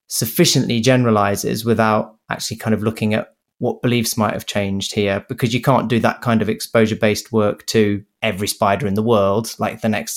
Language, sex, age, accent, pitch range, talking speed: English, male, 20-39, British, 105-115 Hz, 190 wpm